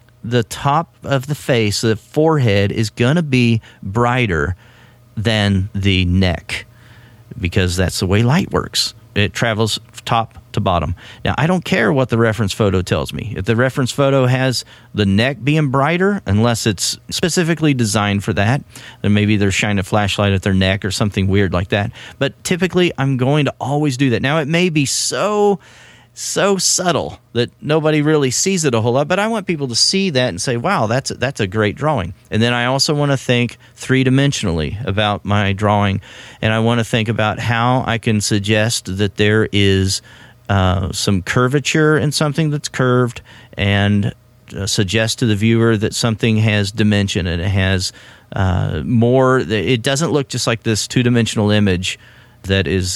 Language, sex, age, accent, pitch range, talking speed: English, male, 40-59, American, 100-130 Hz, 180 wpm